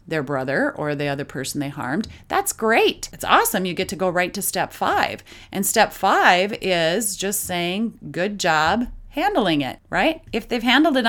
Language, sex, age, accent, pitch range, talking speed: English, female, 30-49, American, 170-235 Hz, 190 wpm